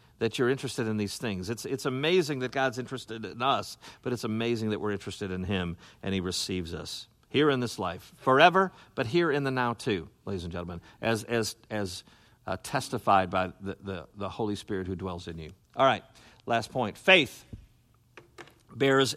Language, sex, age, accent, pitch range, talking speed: English, male, 50-69, American, 100-135 Hz, 190 wpm